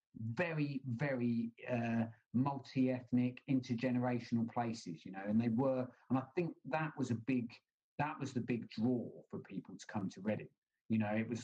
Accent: British